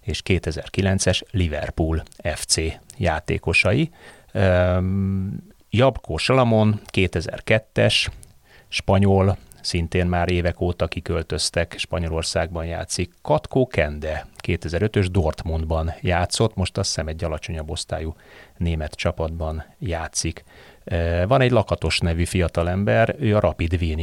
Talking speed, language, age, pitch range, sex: 100 wpm, Hungarian, 30-49, 80-100 Hz, male